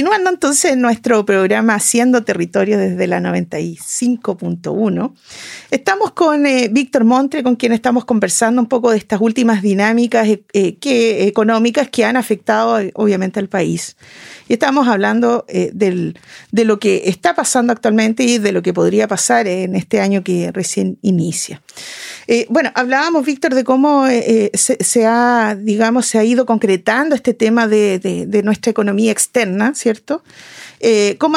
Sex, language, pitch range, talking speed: female, Spanish, 215-260 Hz, 160 wpm